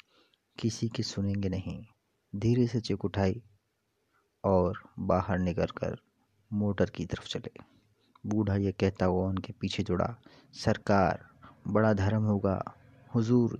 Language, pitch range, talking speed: Hindi, 95-110 Hz, 120 wpm